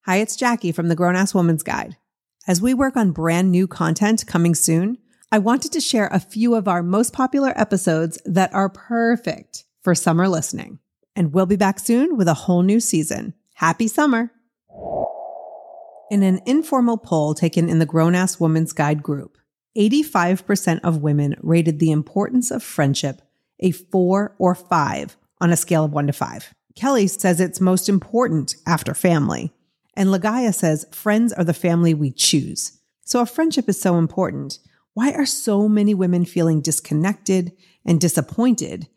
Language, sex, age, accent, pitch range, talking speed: English, female, 30-49, American, 165-215 Hz, 165 wpm